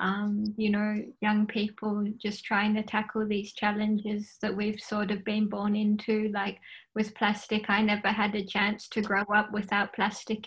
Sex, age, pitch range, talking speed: female, 20-39, 210-220 Hz, 180 wpm